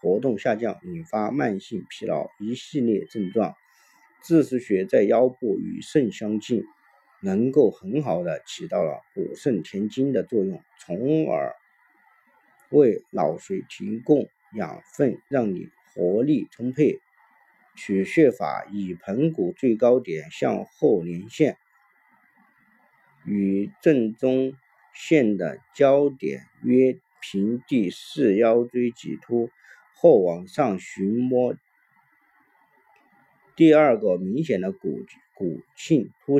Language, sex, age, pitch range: Chinese, male, 50-69, 110-150 Hz